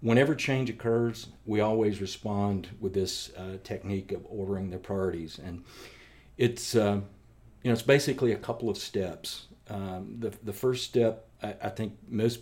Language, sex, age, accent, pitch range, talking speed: English, male, 50-69, American, 95-110 Hz, 165 wpm